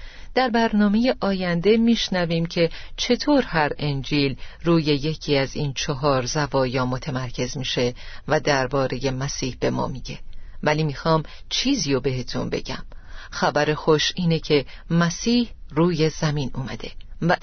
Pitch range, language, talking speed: 135-190 Hz, Persian, 125 wpm